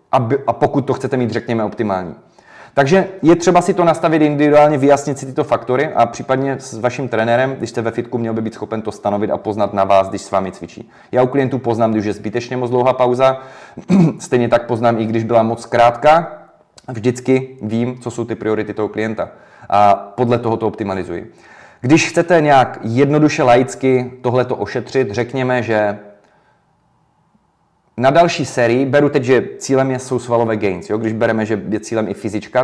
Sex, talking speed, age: male, 185 wpm, 30-49